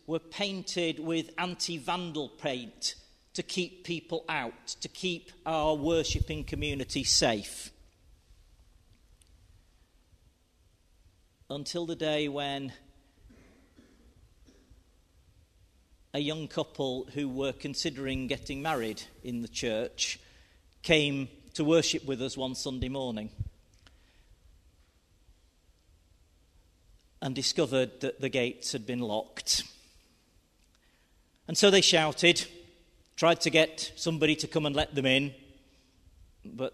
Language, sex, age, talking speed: English, male, 40-59, 100 wpm